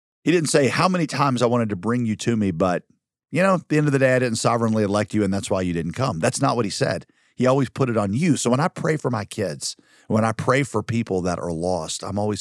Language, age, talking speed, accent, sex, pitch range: English, 40-59, 295 wpm, American, male, 95-125 Hz